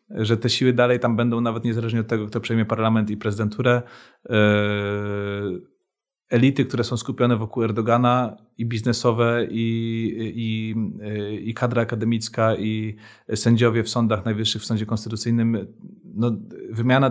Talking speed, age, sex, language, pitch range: 135 wpm, 30-49, male, Polish, 110-120 Hz